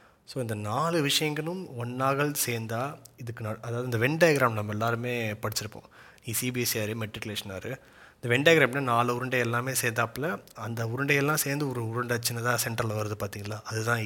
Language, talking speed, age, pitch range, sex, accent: Tamil, 145 wpm, 30-49, 110-130 Hz, male, native